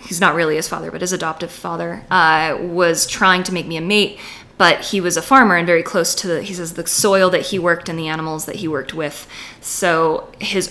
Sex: female